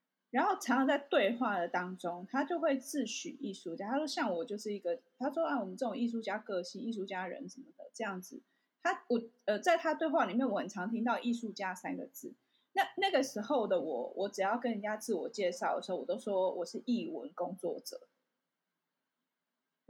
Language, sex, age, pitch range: Chinese, female, 20-39, 200-285 Hz